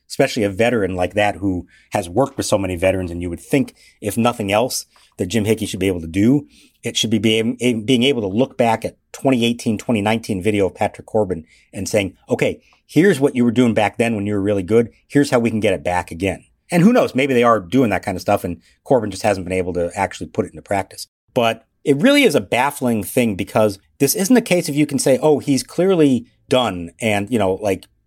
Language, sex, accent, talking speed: English, male, American, 240 wpm